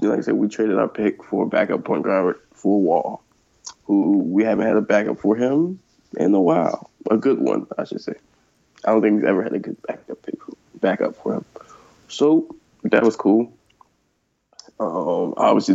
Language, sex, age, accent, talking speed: English, male, 20-39, American, 195 wpm